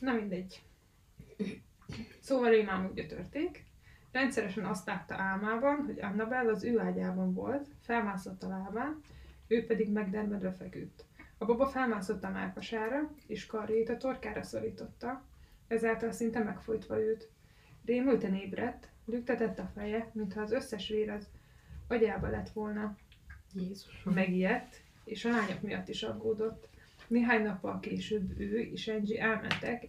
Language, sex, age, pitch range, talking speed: Hungarian, female, 20-39, 200-235 Hz, 130 wpm